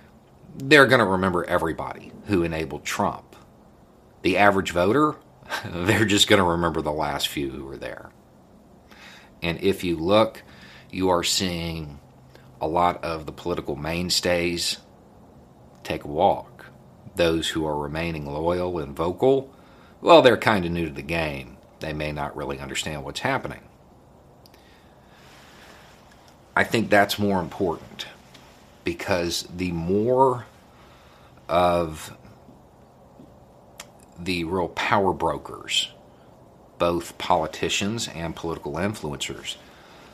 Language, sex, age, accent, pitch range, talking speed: English, male, 50-69, American, 80-100 Hz, 115 wpm